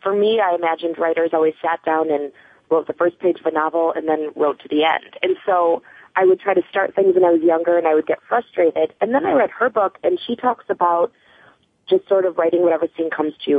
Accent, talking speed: American, 255 wpm